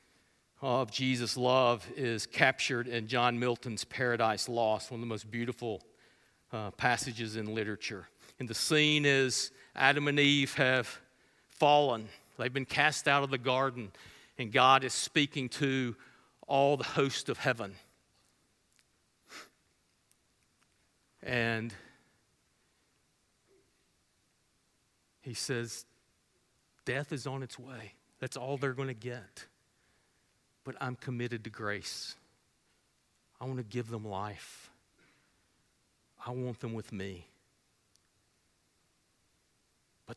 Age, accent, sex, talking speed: 50-69, American, male, 115 wpm